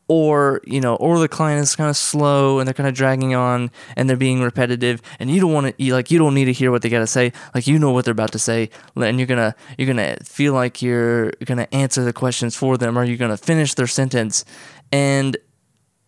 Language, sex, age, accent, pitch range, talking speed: English, male, 20-39, American, 120-145 Hz, 260 wpm